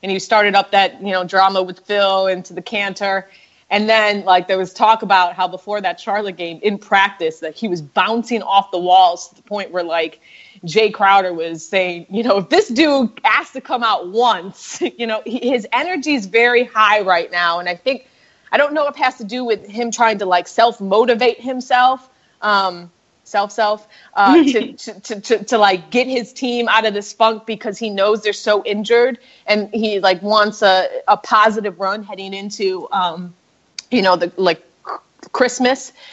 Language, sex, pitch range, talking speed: English, female, 180-225 Hz, 200 wpm